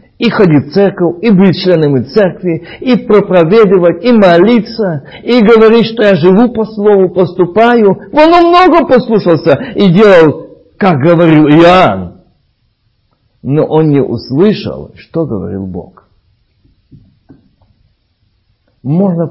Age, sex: 50-69, male